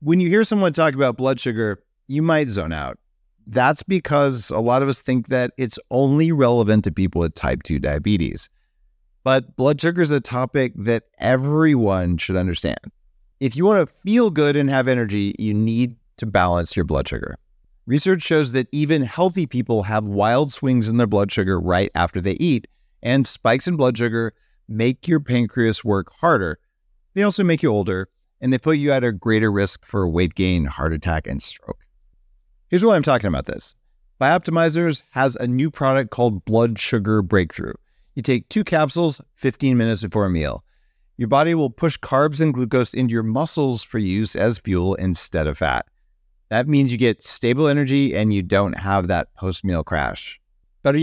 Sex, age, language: male, 40-59, English